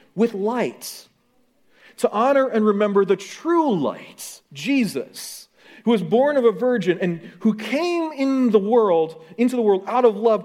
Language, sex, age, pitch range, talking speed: English, male, 40-59, 195-250 Hz, 160 wpm